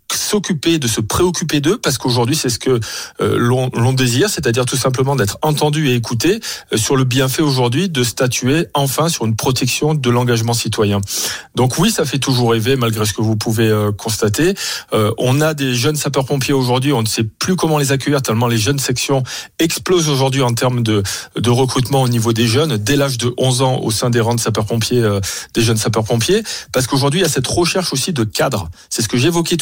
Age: 40-59